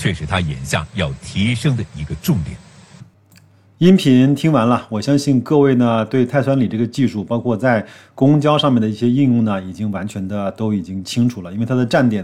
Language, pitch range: Chinese, 105-130 Hz